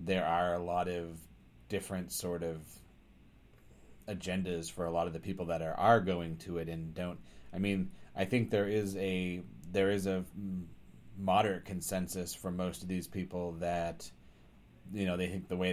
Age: 30-49